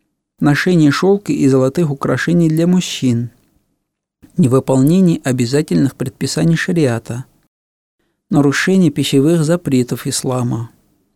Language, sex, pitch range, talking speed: Russian, male, 125-165 Hz, 80 wpm